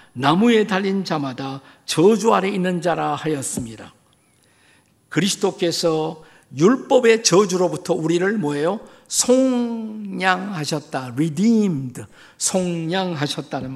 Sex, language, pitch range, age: male, Korean, 140-190 Hz, 50-69